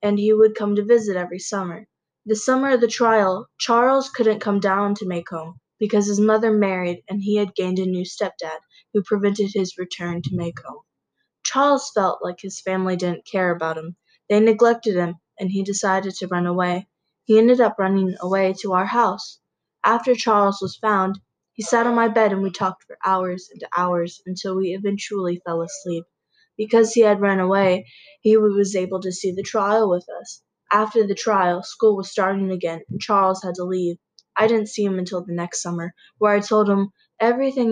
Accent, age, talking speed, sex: American, 20-39, 195 wpm, female